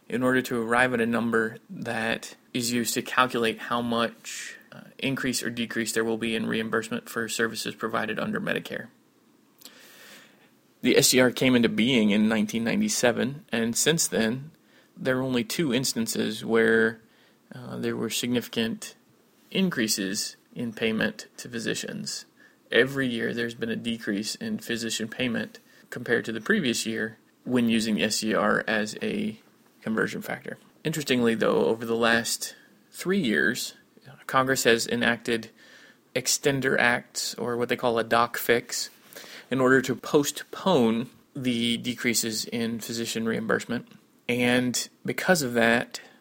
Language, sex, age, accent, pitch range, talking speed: English, male, 20-39, American, 115-130 Hz, 140 wpm